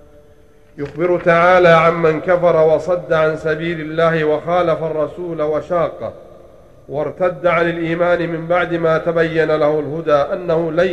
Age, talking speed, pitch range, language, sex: 40-59, 120 wpm, 160-175 Hz, Arabic, male